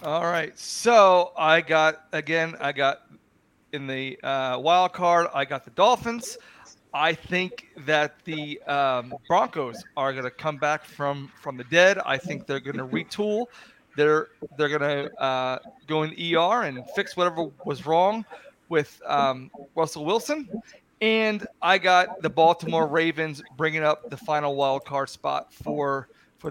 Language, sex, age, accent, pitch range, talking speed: English, male, 40-59, American, 145-185 Hz, 160 wpm